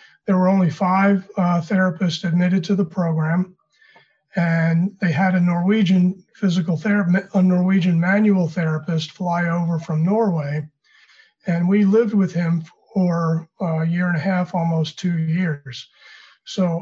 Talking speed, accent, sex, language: 145 wpm, American, male, English